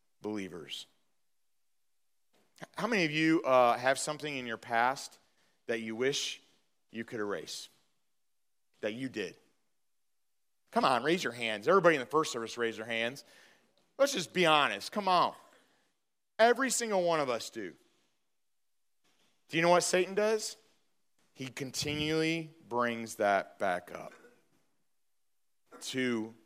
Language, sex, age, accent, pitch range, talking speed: English, male, 40-59, American, 115-155 Hz, 130 wpm